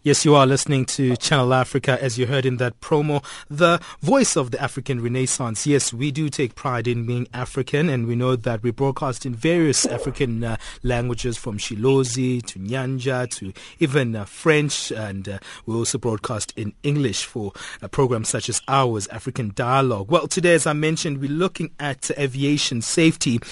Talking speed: 180 wpm